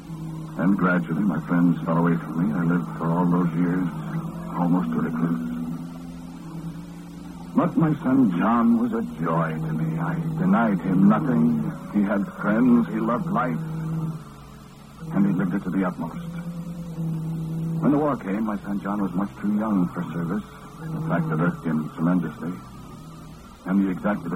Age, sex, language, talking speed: 60-79, male, English, 160 wpm